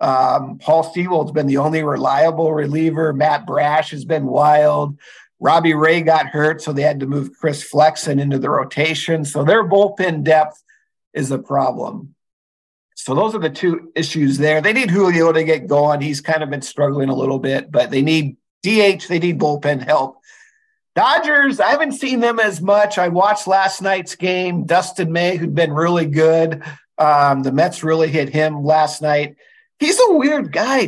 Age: 50-69